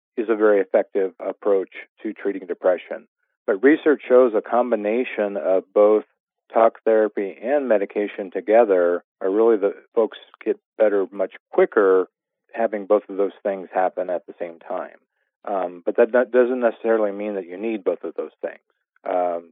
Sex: male